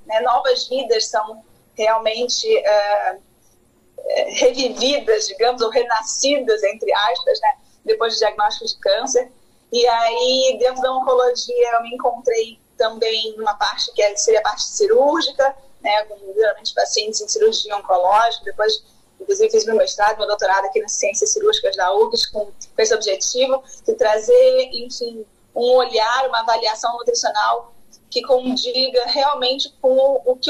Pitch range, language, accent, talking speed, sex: 225-285 Hz, Portuguese, Brazilian, 145 wpm, female